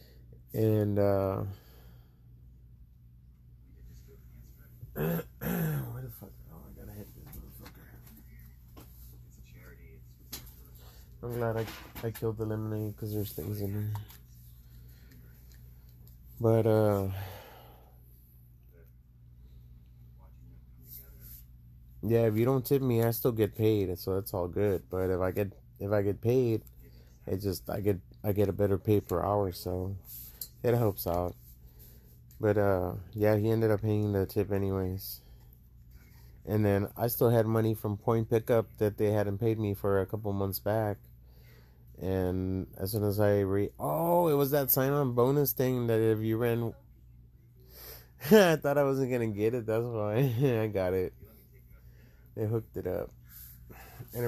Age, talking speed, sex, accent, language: 30-49, 130 wpm, male, American, English